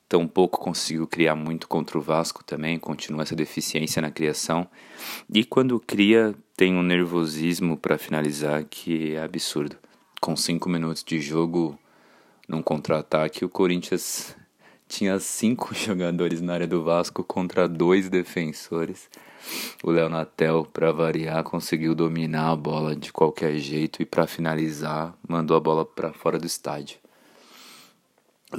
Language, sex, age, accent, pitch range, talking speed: Portuguese, male, 20-39, Brazilian, 80-90 Hz, 135 wpm